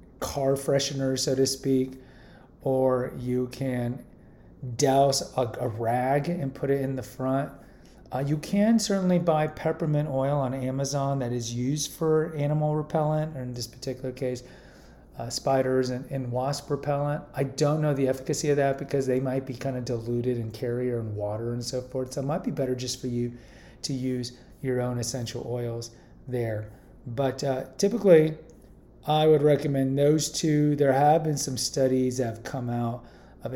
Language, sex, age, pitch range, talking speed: English, male, 30-49, 125-145 Hz, 175 wpm